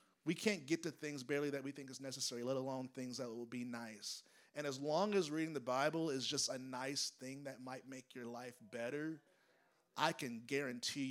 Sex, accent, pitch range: male, American, 145-205 Hz